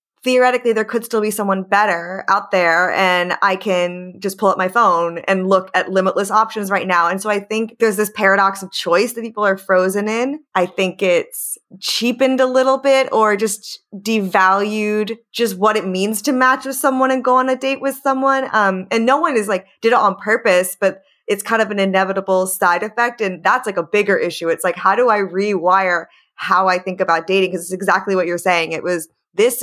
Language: English